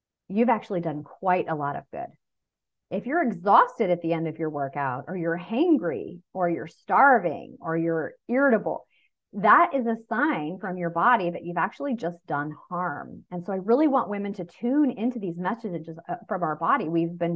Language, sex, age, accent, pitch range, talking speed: English, female, 30-49, American, 175-255 Hz, 190 wpm